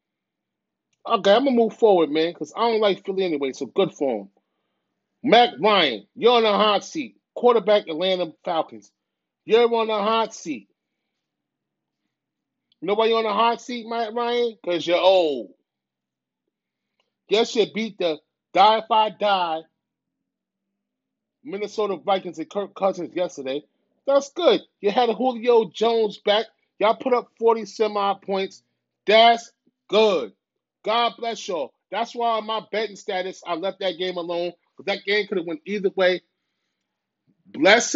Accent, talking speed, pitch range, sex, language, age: American, 150 wpm, 185-225 Hz, male, English, 30-49